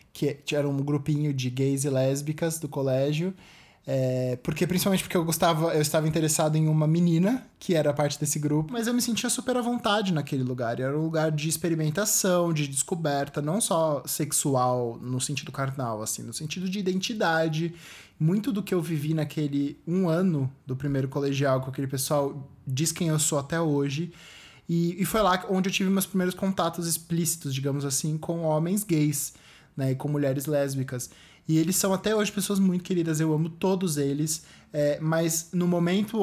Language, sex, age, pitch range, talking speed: Portuguese, male, 20-39, 140-180 Hz, 185 wpm